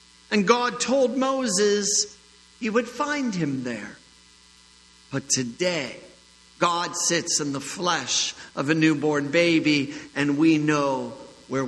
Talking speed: 125 wpm